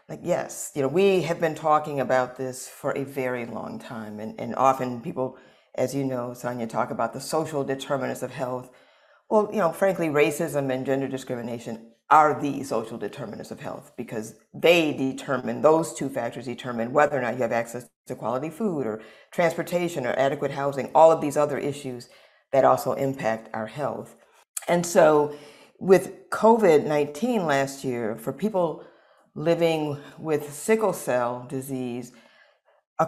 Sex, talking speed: female, 160 wpm